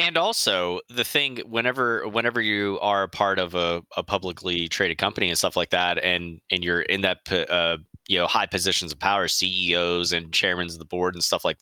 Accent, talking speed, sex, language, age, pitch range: American, 210 wpm, male, English, 20-39, 90-105 Hz